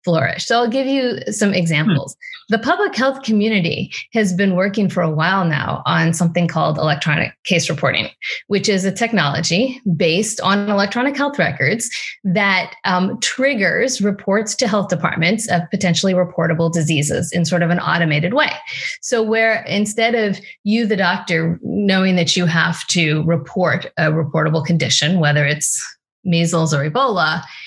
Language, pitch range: English, 170-220 Hz